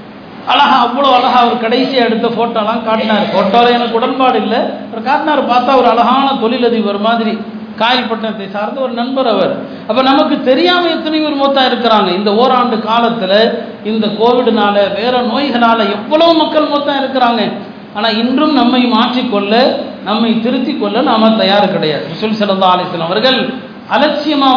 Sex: male